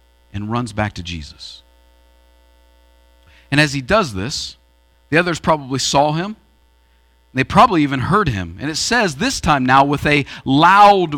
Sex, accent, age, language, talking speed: male, American, 40-59, English, 160 wpm